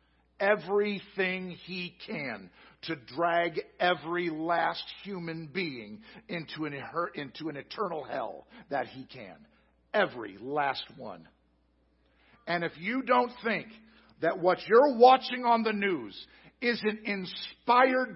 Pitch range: 195-295 Hz